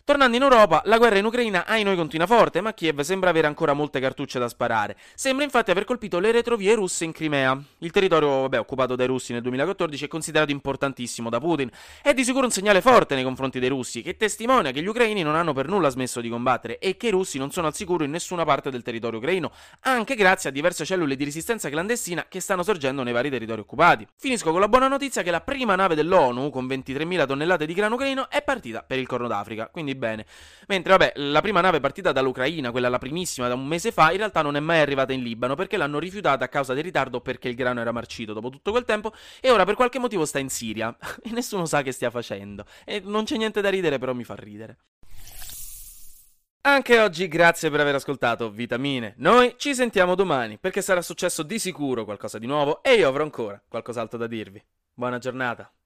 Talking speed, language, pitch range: 220 wpm, Italian, 125-200 Hz